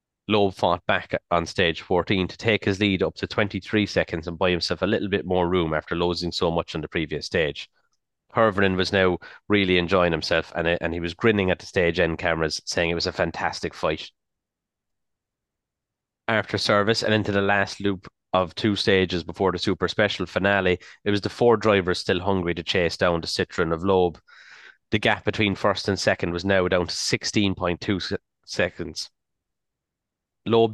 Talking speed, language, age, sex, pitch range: 185 wpm, English, 30-49, male, 90-105 Hz